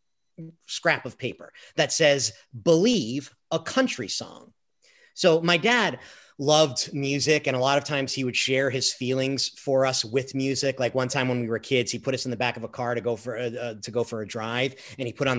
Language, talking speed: English, 225 wpm